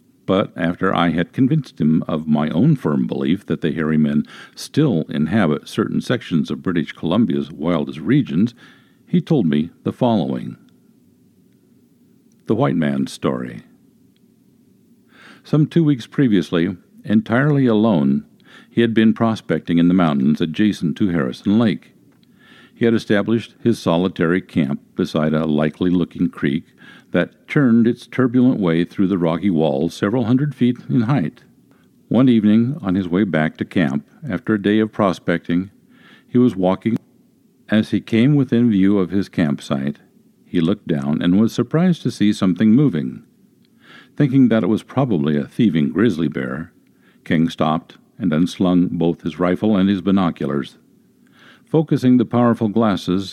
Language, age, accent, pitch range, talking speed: English, 50-69, American, 85-115 Hz, 145 wpm